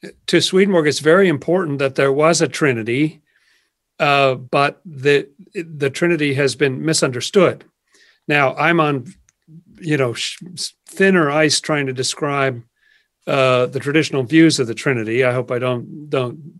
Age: 50-69